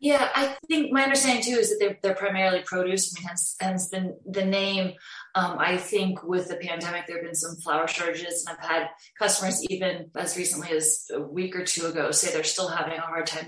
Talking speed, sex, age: 205 wpm, female, 20-39